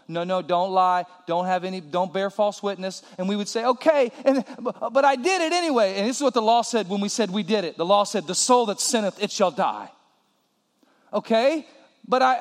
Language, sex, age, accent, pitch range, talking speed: English, male, 40-59, American, 190-265 Hz, 225 wpm